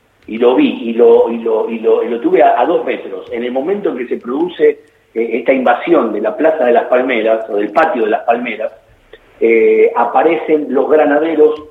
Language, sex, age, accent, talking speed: Spanish, male, 50-69, Argentinian, 210 wpm